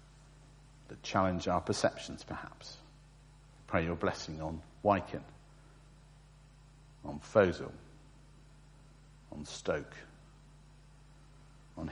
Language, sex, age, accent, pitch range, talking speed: English, male, 50-69, British, 110-145 Hz, 70 wpm